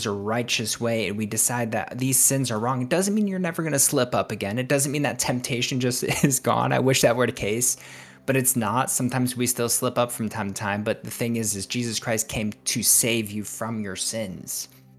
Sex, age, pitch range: male, 20-39, 105-125 Hz